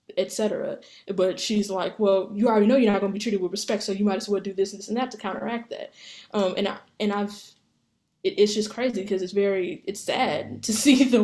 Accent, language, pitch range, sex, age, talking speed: American, English, 195-215 Hz, female, 10-29, 255 wpm